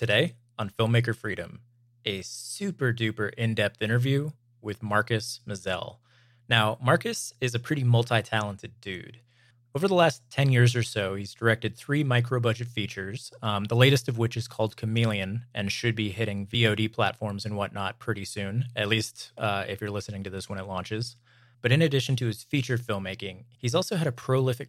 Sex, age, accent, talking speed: male, 20-39, American, 175 wpm